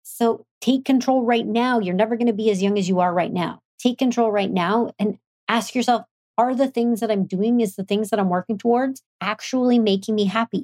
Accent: American